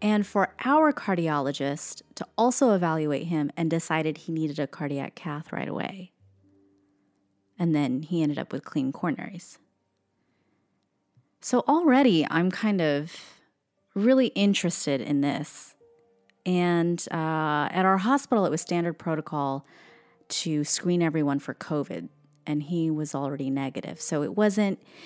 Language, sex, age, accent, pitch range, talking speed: English, female, 30-49, American, 145-200 Hz, 135 wpm